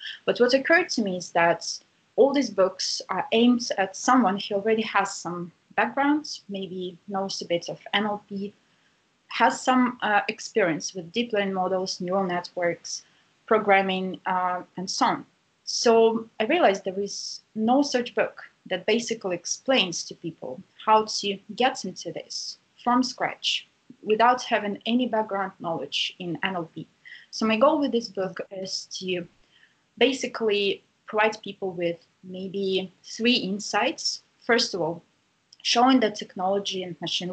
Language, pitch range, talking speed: English, 185-225 Hz, 145 wpm